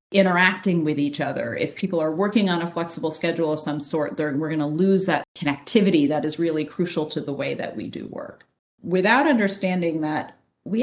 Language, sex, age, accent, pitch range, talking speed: English, female, 30-49, American, 155-195 Hz, 205 wpm